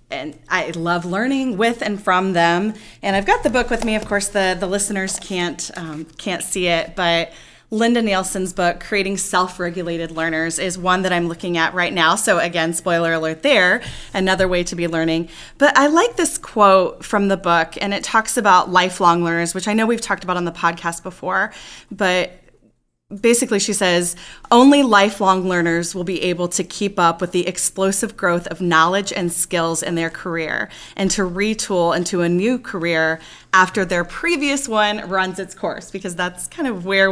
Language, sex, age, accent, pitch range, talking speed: English, female, 20-39, American, 170-200 Hz, 190 wpm